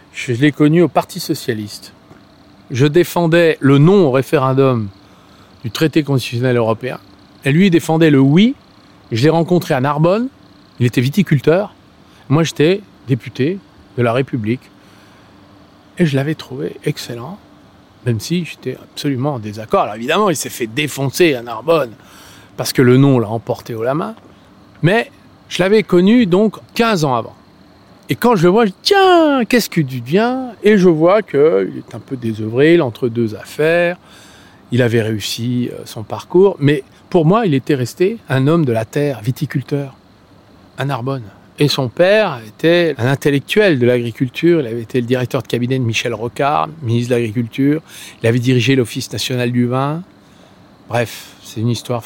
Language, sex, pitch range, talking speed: French, male, 115-160 Hz, 170 wpm